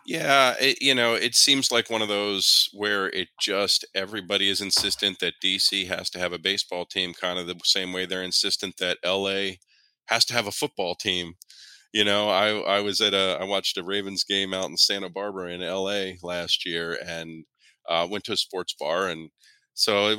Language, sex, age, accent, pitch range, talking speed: English, male, 30-49, American, 90-105 Hz, 205 wpm